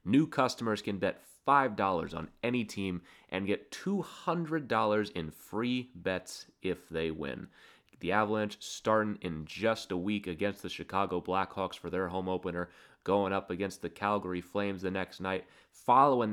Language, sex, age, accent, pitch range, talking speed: English, male, 30-49, American, 90-110 Hz, 155 wpm